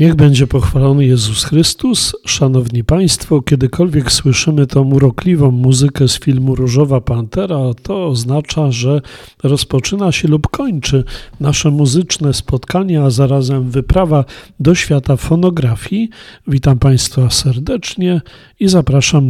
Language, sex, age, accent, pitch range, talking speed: Polish, male, 40-59, native, 130-160 Hz, 115 wpm